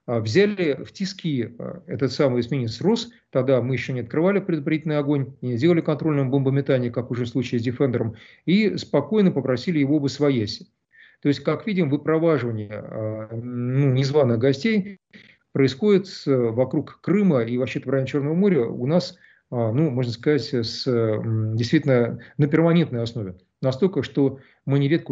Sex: male